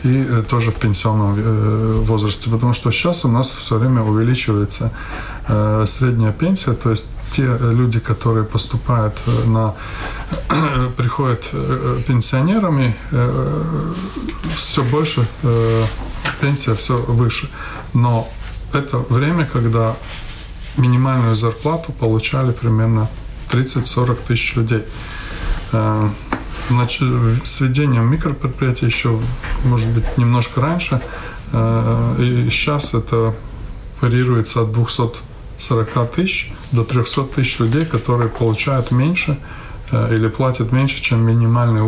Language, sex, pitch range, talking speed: Russian, male, 110-130 Hz, 95 wpm